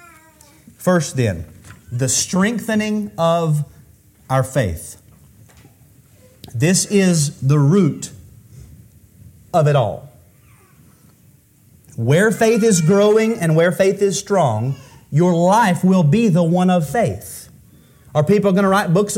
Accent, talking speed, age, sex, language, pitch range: American, 115 wpm, 30-49, male, English, 130-195 Hz